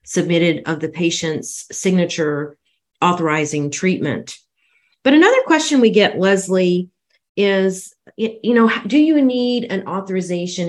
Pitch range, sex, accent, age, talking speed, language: 155-190 Hz, female, American, 40-59, 120 wpm, English